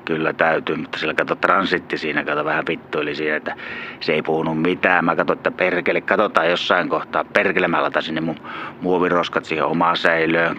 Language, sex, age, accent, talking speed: Finnish, male, 30-49, native, 180 wpm